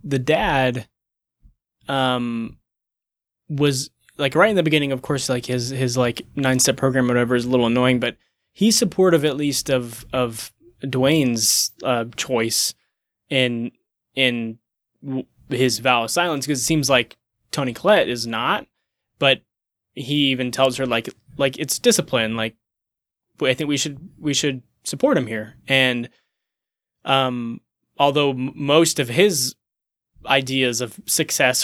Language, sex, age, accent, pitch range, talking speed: English, male, 10-29, American, 125-155 Hz, 145 wpm